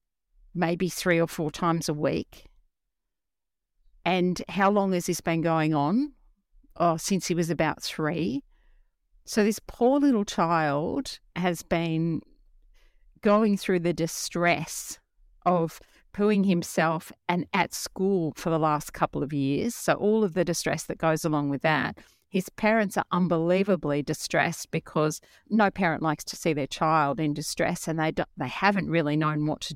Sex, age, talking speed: female, 50-69, 155 wpm